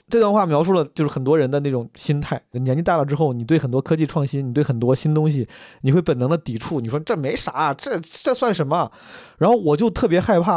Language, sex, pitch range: Chinese, male, 125-160 Hz